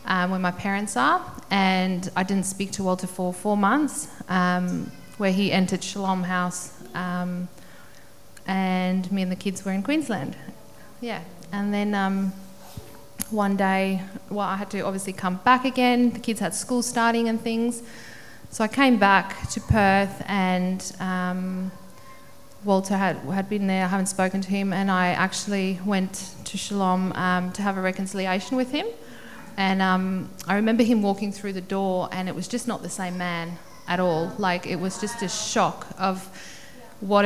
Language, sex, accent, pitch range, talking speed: English, female, Australian, 180-200 Hz, 175 wpm